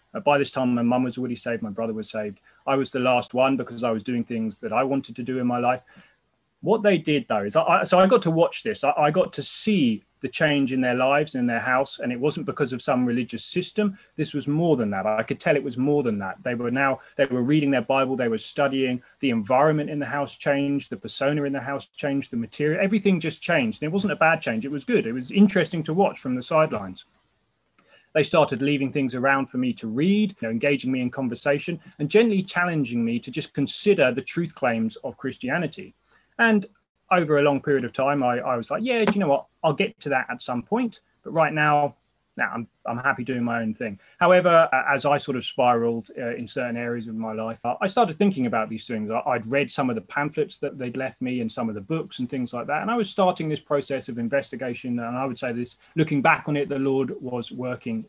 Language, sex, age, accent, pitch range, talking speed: English, male, 30-49, British, 125-165 Hz, 250 wpm